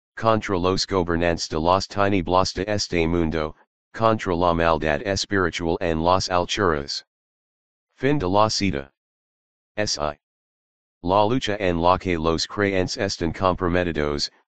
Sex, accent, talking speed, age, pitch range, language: male, American, 125 wpm, 40-59, 85-95 Hz, English